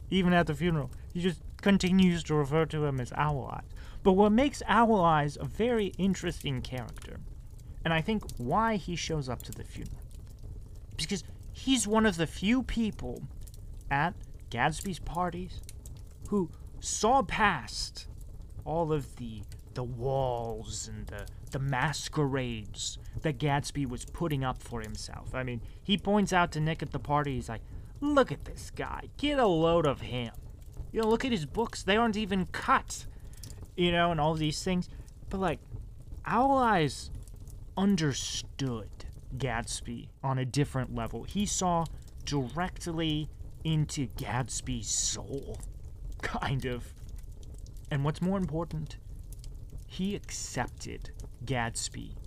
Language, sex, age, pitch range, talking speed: English, male, 30-49, 115-175 Hz, 140 wpm